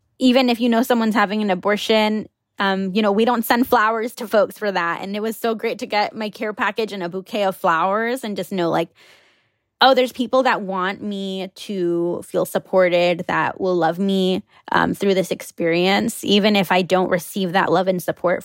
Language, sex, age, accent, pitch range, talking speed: English, female, 10-29, American, 185-225 Hz, 210 wpm